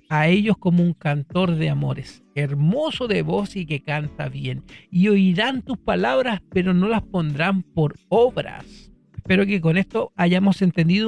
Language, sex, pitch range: Spanish, male, 155-195 Hz